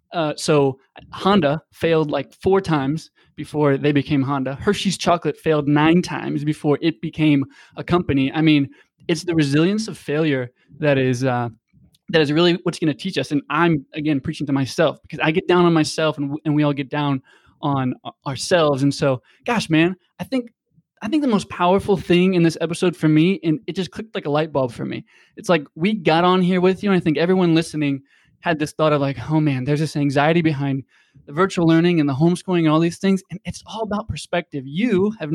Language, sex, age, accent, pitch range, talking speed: English, male, 20-39, American, 145-175 Hz, 215 wpm